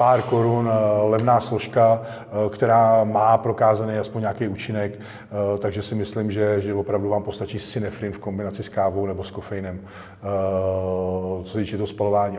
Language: Czech